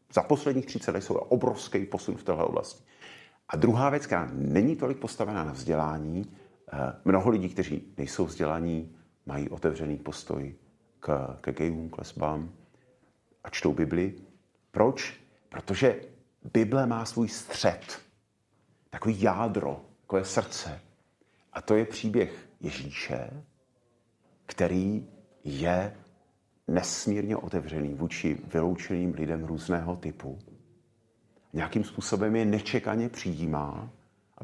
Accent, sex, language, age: native, male, Czech, 40-59